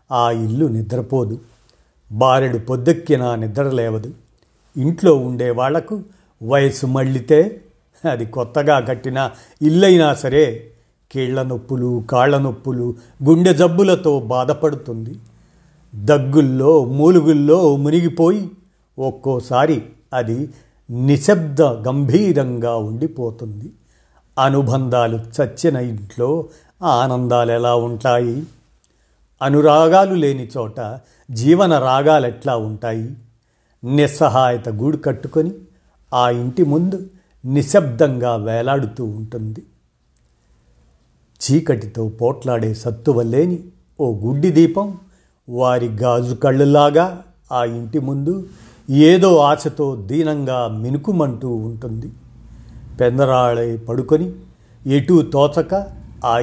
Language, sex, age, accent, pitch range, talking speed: Telugu, male, 50-69, native, 120-155 Hz, 75 wpm